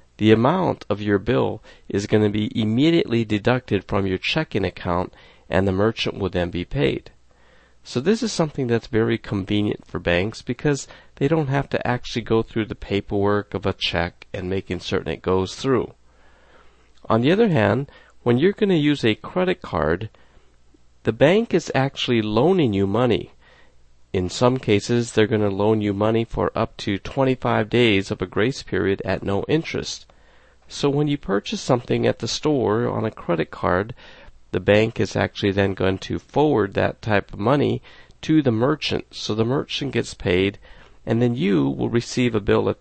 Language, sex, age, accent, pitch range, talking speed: English, male, 50-69, American, 95-125 Hz, 180 wpm